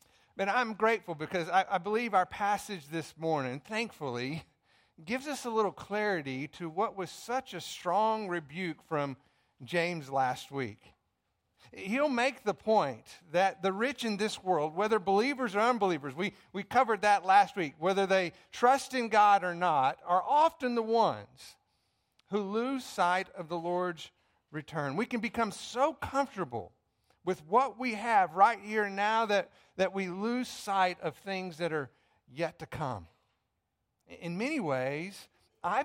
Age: 50-69